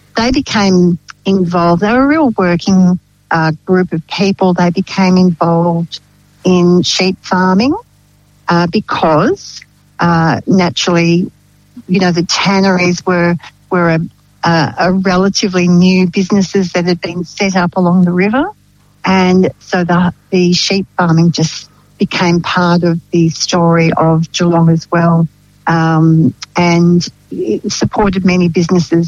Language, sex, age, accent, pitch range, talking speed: English, female, 60-79, Australian, 175-205 Hz, 130 wpm